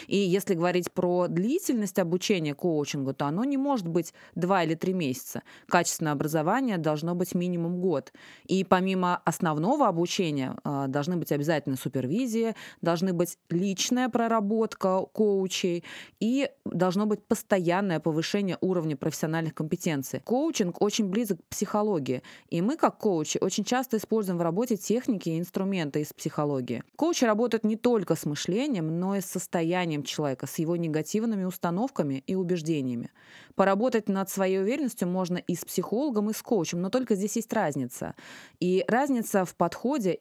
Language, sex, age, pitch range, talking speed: Russian, female, 20-39, 170-220 Hz, 150 wpm